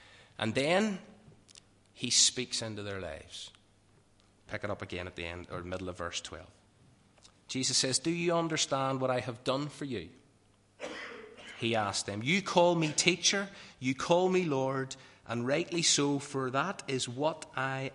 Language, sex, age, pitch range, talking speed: English, male, 30-49, 100-135 Hz, 165 wpm